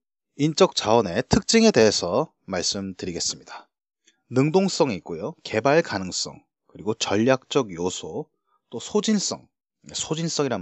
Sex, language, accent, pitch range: male, Korean, native, 105-175 Hz